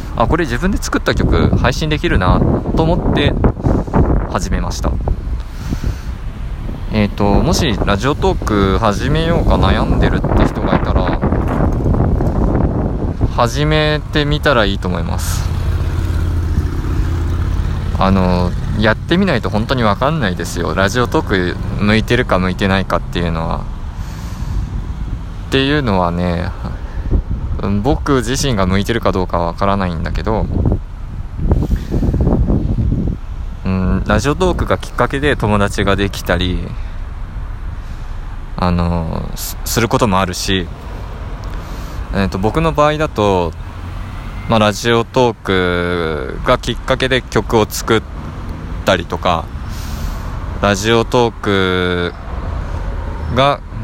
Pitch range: 85-105 Hz